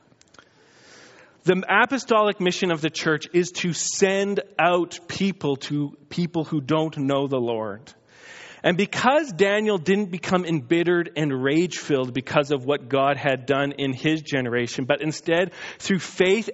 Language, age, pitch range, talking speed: English, 40-59, 165-225 Hz, 140 wpm